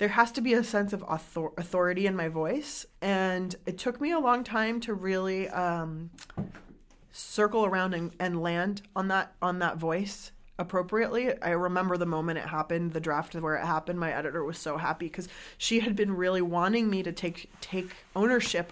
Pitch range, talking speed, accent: 175-230 Hz, 190 wpm, American